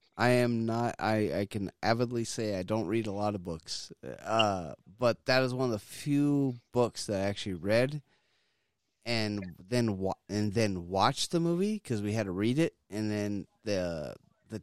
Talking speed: 190 wpm